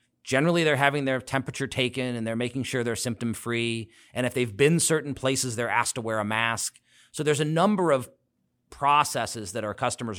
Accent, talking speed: American, 195 wpm